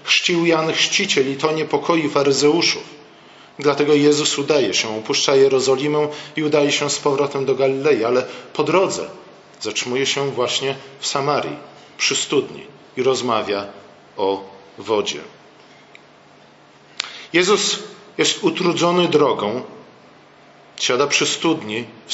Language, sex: Polish, male